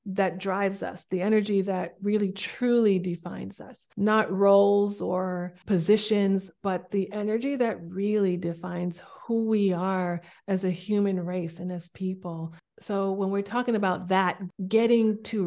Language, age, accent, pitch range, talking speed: English, 30-49, American, 185-230 Hz, 145 wpm